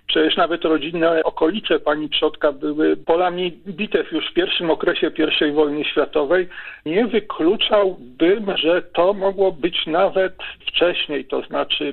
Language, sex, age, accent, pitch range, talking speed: Polish, male, 50-69, native, 155-200 Hz, 130 wpm